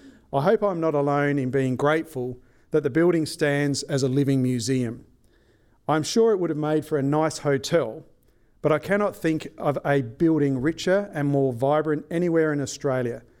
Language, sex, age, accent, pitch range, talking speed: English, male, 40-59, Australian, 135-160 Hz, 180 wpm